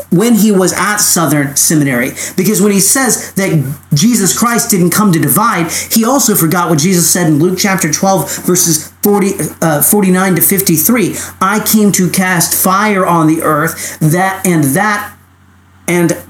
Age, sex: 40-59, male